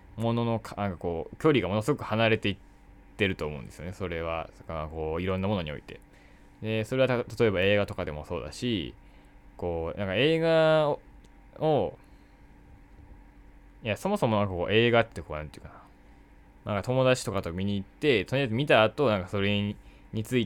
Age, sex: 20-39, male